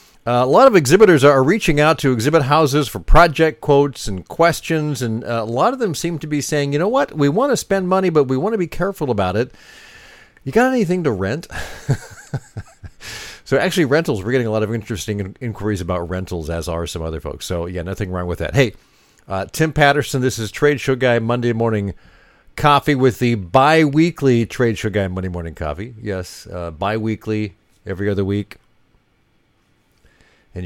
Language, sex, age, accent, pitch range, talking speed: English, male, 50-69, American, 105-150 Hz, 190 wpm